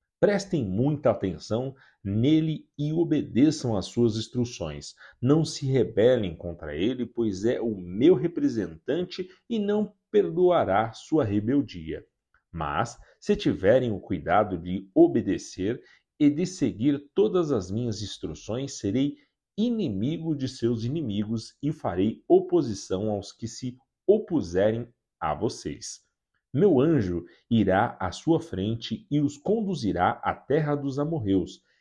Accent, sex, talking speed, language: Brazilian, male, 125 wpm, Portuguese